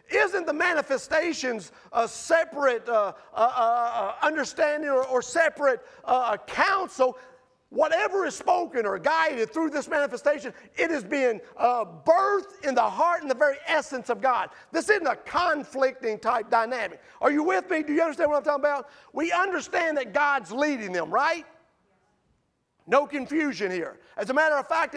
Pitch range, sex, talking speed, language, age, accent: 245-310 Hz, male, 165 wpm, English, 40-59, American